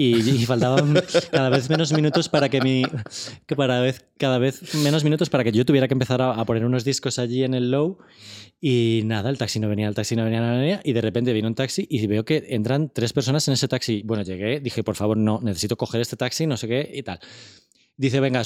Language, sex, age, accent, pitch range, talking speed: Spanish, male, 20-39, Spanish, 110-135 Hz, 235 wpm